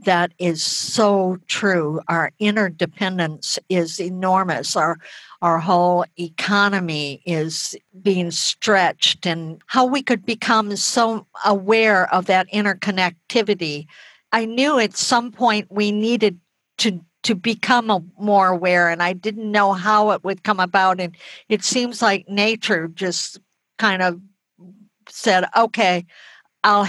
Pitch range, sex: 175-210 Hz, female